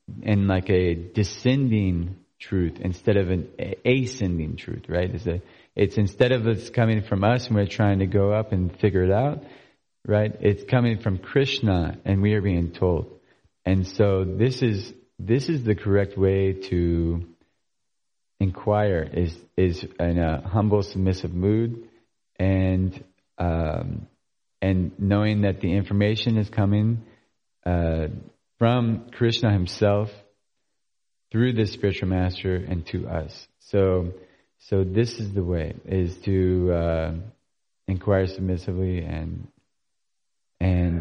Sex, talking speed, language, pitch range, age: male, 135 wpm, English, 90-105 Hz, 30-49